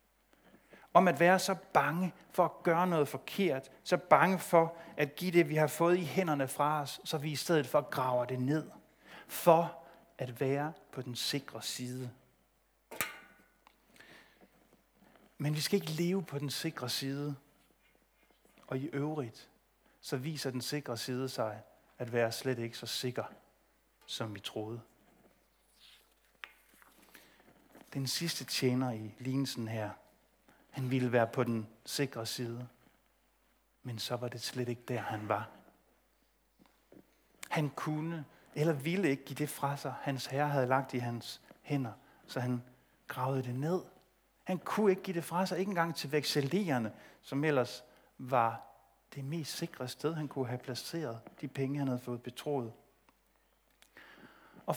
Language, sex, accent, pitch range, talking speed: Danish, male, native, 125-165 Hz, 150 wpm